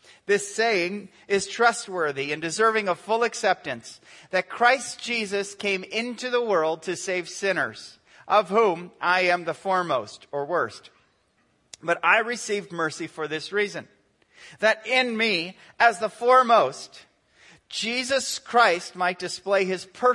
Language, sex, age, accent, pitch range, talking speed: English, male, 40-59, American, 165-215 Hz, 135 wpm